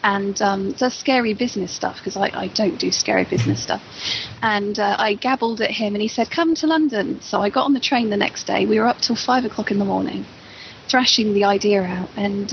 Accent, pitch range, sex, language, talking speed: British, 210-245 Hz, female, English, 235 wpm